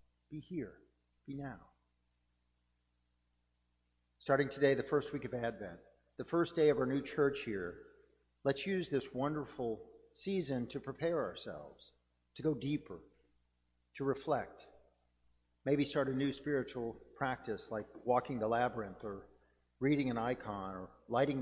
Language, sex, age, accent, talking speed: English, male, 50-69, American, 135 wpm